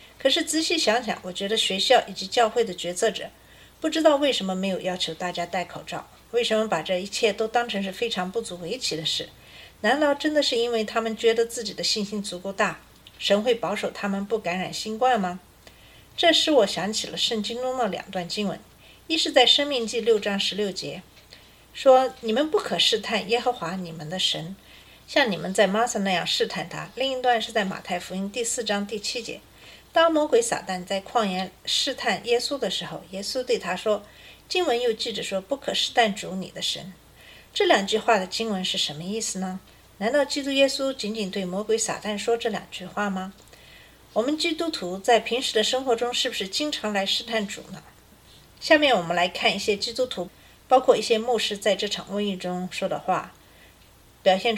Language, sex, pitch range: Chinese, female, 185-240 Hz